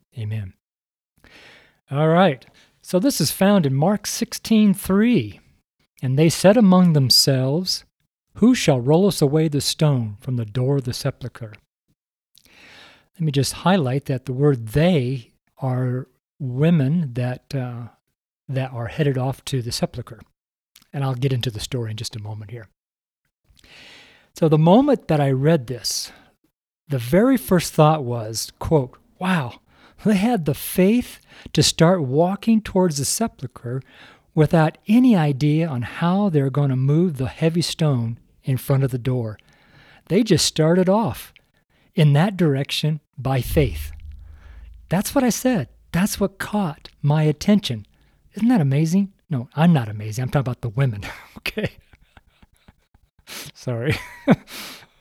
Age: 50-69